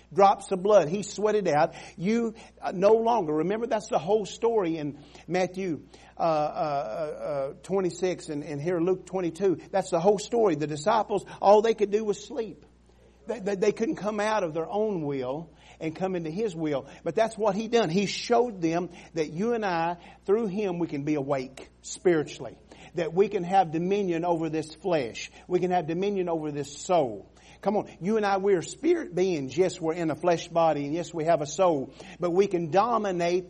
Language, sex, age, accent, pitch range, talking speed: English, male, 50-69, American, 130-195 Hz, 200 wpm